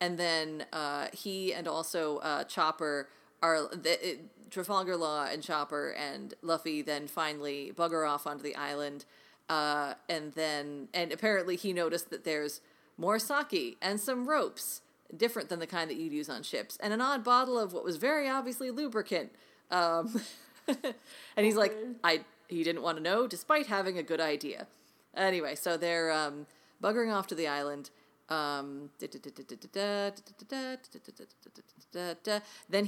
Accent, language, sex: American, English, female